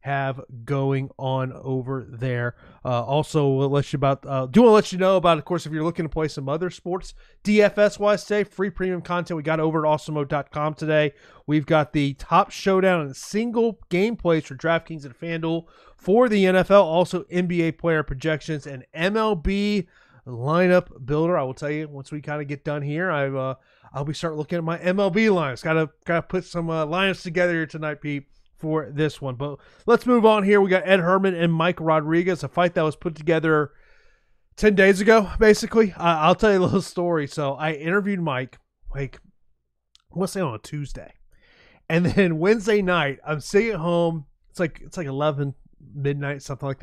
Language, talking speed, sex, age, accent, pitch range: English, 195 wpm, male, 30-49, American, 145-195 Hz